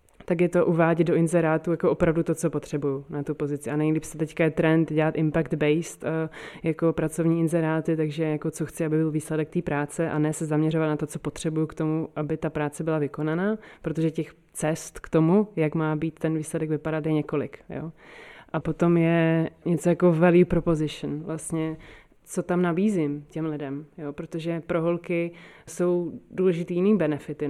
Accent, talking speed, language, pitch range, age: native, 170 wpm, Czech, 155-165 Hz, 30-49